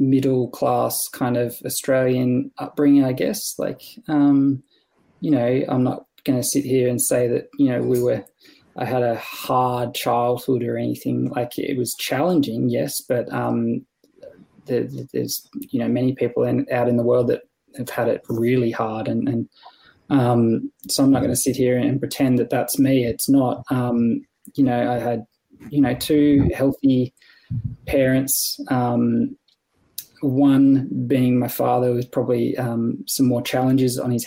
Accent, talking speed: Australian, 170 wpm